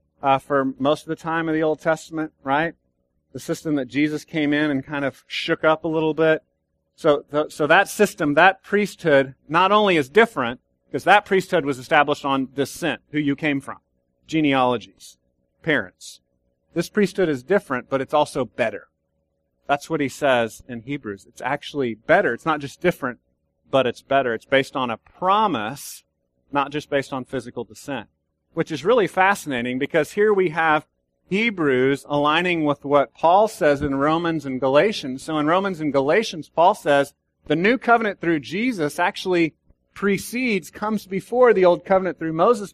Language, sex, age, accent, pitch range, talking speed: English, male, 40-59, American, 135-175 Hz, 175 wpm